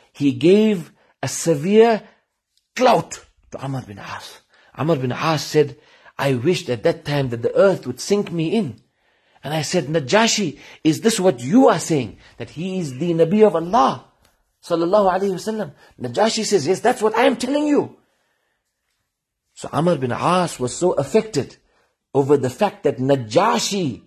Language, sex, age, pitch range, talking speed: English, male, 40-59, 110-170 Hz, 165 wpm